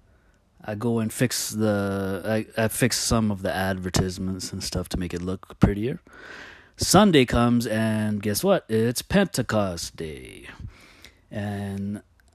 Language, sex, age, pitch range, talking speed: English, male, 30-49, 90-115 Hz, 135 wpm